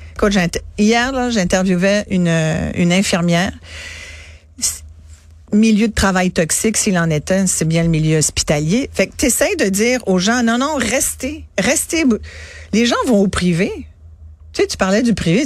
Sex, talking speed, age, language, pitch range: female, 165 wpm, 50-69, French, 170-215 Hz